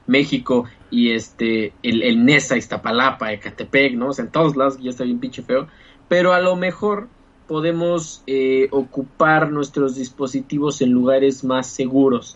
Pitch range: 120-150 Hz